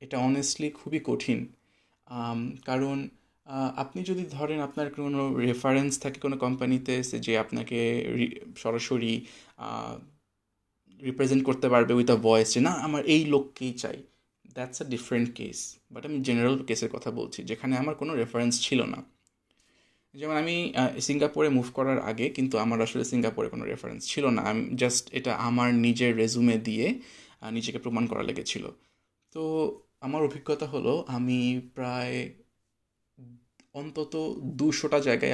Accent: native